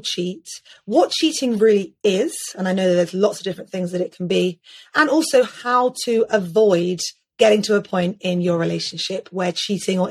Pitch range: 180-240 Hz